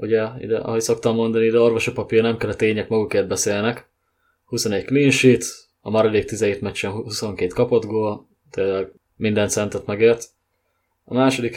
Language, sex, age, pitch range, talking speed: English, male, 20-39, 105-120 Hz, 150 wpm